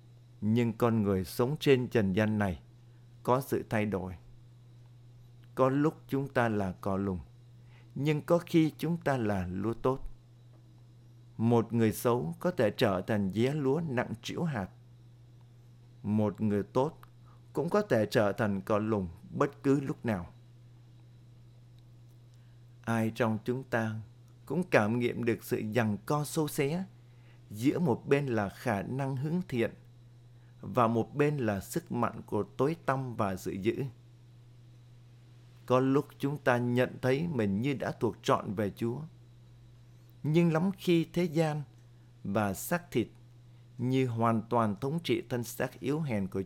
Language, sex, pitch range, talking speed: Vietnamese, male, 115-130 Hz, 150 wpm